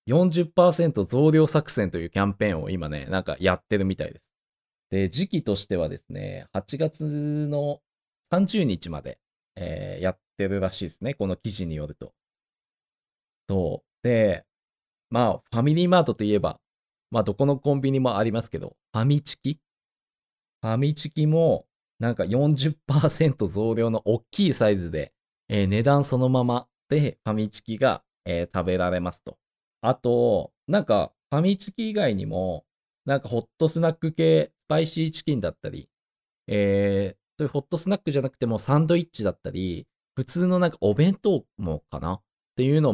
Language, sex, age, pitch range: Japanese, male, 20-39, 95-145 Hz